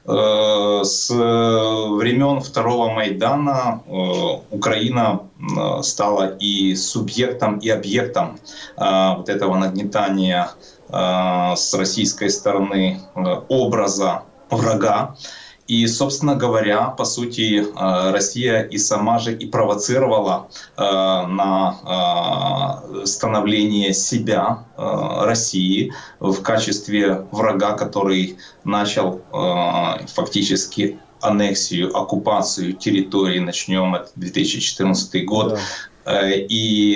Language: Russian